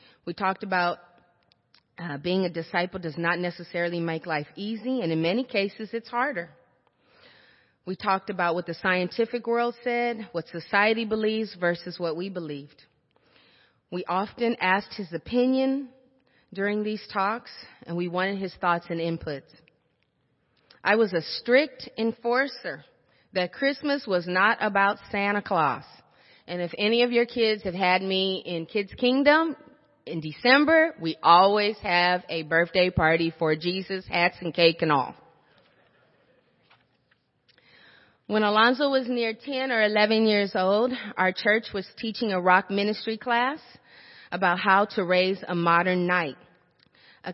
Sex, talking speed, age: female, 145 wpm, 30-49